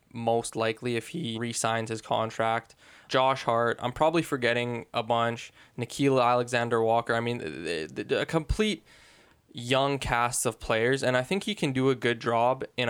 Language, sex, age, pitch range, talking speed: English, male, 10-29, 115-130 Hz, 160 wpm